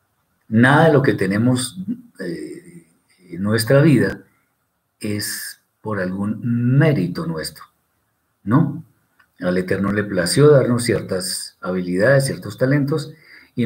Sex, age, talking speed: male, 50-69, 110 wpm